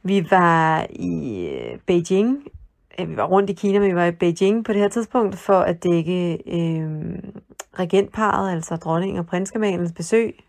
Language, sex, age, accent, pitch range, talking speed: Danish, female, 30-49, native, 180-220 Hz, 160 wpm